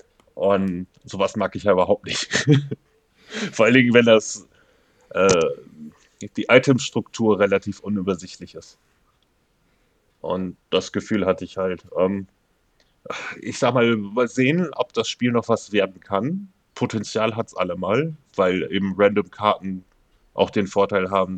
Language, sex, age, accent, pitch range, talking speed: German, male, 10-29, German, 95-115 Hz, 140 wpm